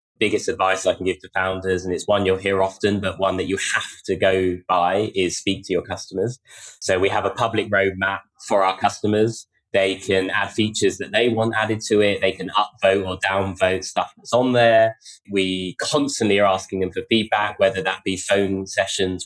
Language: English